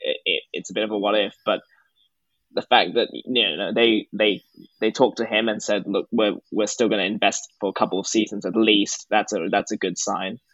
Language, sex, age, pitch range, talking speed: English, male, 10-29, 105-120 Hz, 245 wpm